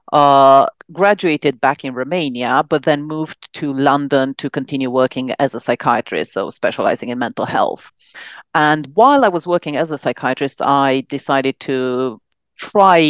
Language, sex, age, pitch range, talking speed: English, female, 40-59, 135-170 Hz, 150 wpm